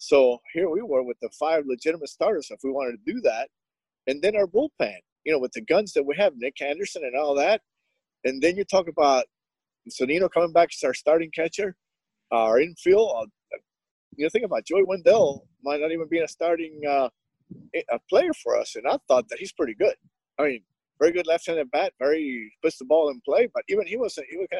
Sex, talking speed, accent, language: male, 220 wpm, American, English